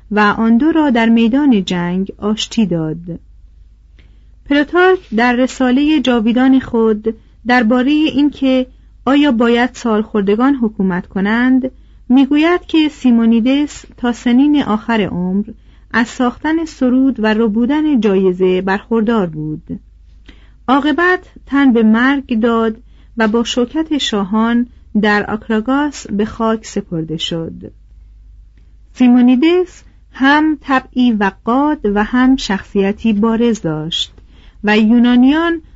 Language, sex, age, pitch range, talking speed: Persian, female, 40-59, 200-265 Hz, 105 wpm